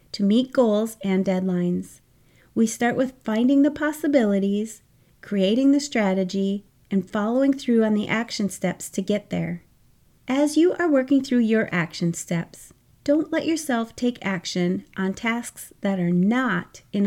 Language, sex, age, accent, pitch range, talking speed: English, female, 30-49, American, 190-260 Hz, 150 wpm